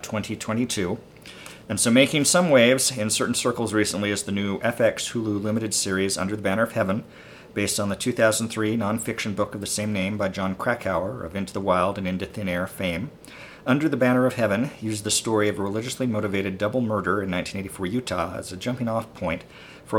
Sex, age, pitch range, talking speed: male, 50-69, 95-115 Hz, 200 wpm